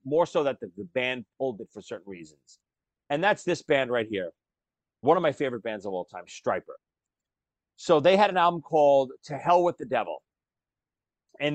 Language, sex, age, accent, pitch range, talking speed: English, male, 40-59, American, 135-175 Hz, 190 wpm